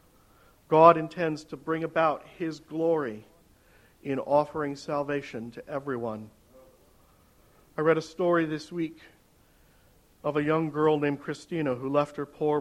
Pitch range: 130-155 Hz